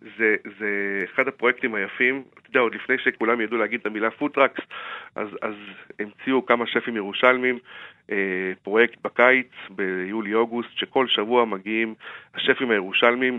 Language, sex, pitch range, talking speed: Hebrew, male, 105-125 Hz, 130 wpm